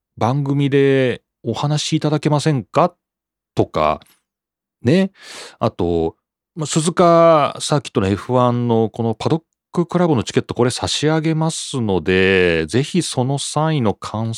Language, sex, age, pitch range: Japanese, male, 40-59, 105-160 Hz